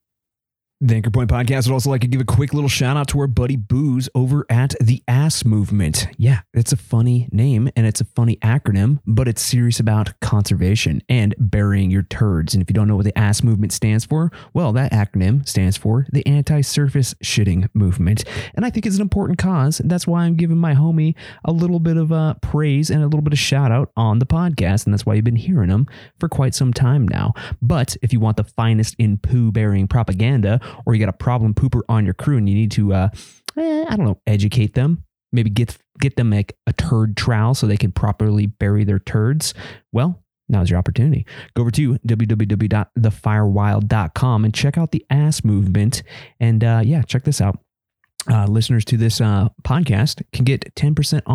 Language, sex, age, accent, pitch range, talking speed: English, male, 30-49, American, 105-135 Hz, 205 wpm